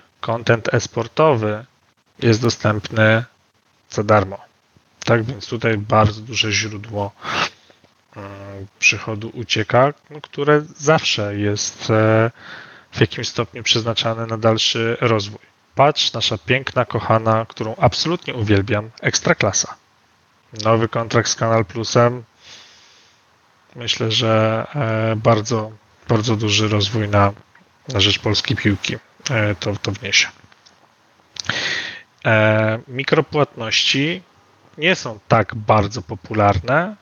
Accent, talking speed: native, 90 wpm